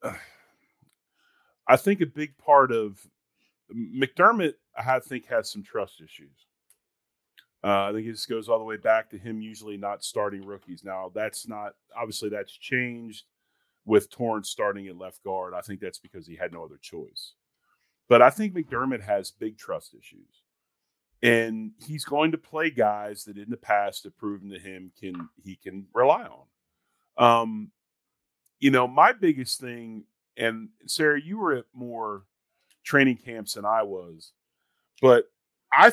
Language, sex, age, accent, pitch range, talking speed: English, male, 40-59, American, 100-140 Hz, 160 wpm